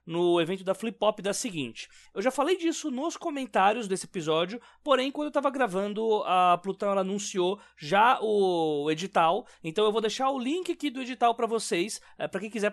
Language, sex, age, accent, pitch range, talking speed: Portuguese, male, 20-39, Brazilian, 175-230 Hz, 200 wpm